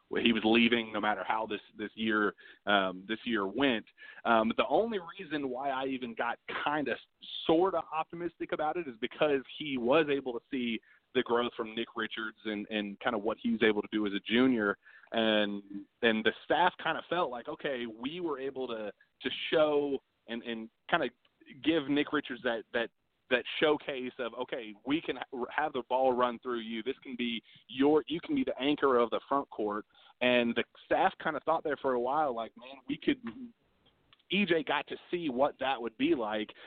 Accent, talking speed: American, 205 wpm